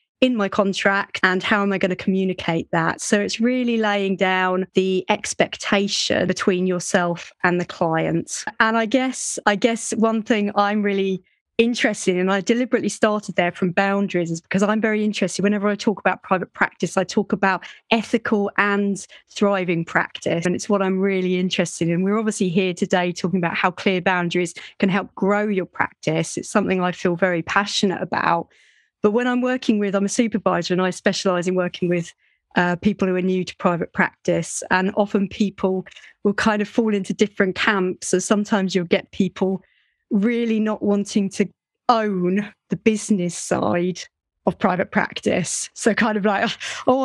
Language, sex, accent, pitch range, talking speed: English, female, British, 185-220 Hz, 180 wpm